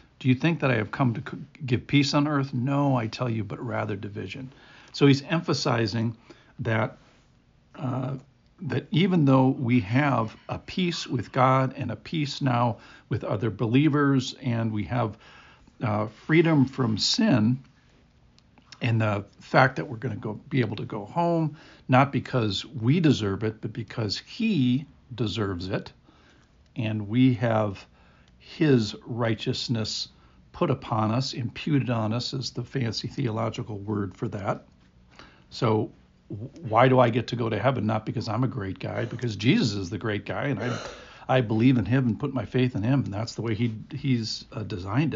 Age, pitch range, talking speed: 60-79, 110-130 Hz, 170 wpm